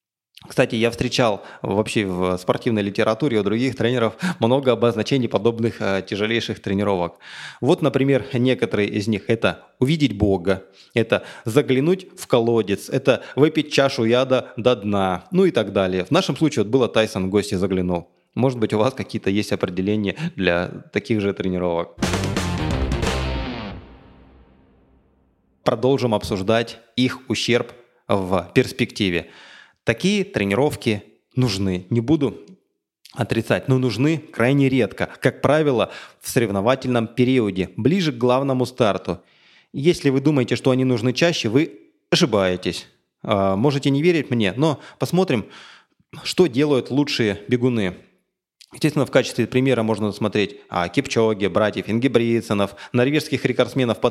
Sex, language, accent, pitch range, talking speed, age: male, Russian, native, 100-135 Hz, 130 wpm, 20-39